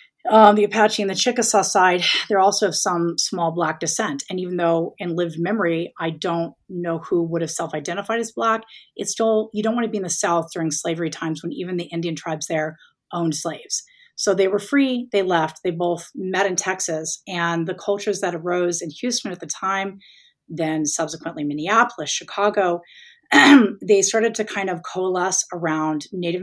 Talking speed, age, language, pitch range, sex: 190 wpm, 30-49, English, 170-205 Hz, female